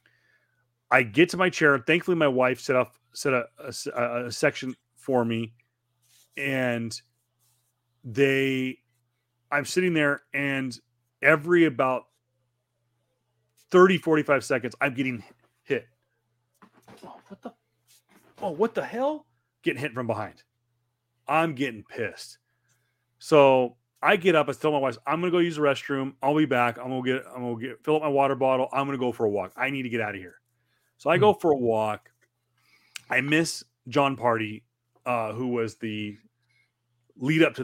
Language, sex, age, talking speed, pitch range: English, male, 30-49, 170 wpm, 120-140 Hz